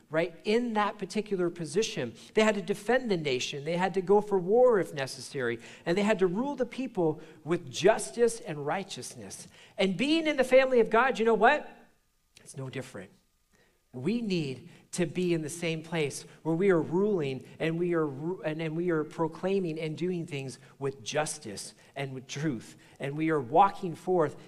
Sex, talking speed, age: male, 190 wpm, 40-59